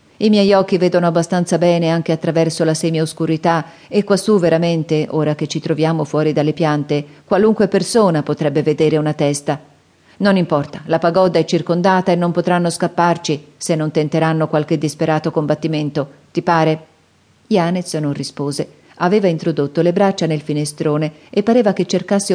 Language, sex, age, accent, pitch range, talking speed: Italian, female, 40-59, native, 150-175 Hz, 155 wpm